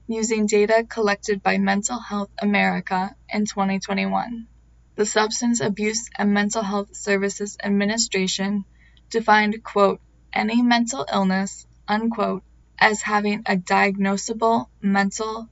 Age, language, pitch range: 20-39, English, 195-225 Hz